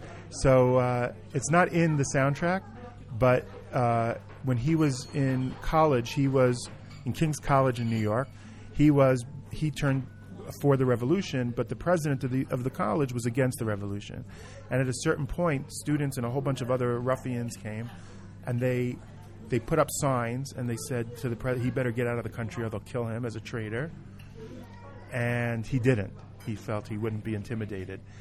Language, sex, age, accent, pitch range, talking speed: English, male, 40-59, American, 110-135 Hz, 190 wpm